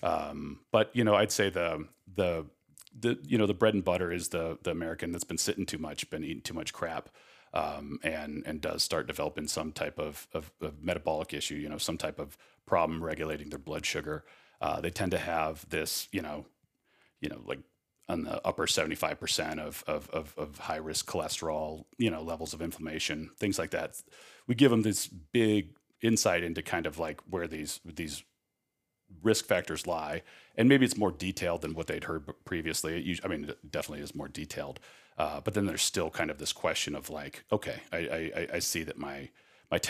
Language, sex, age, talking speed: English, male, 40-59, 200 wpm